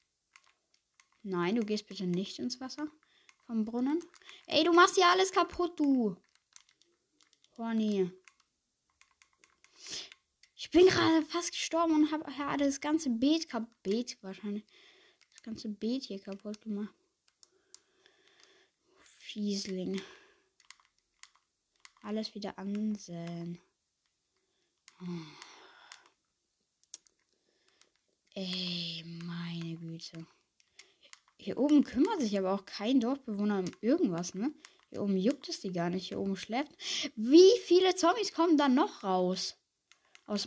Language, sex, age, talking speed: German, female, 20-39, 110 wpm